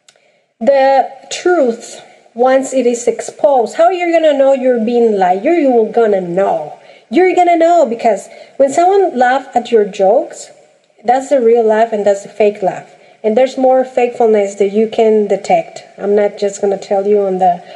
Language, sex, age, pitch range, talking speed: English, female, 40-59, 210-265 Hz, 170 wpm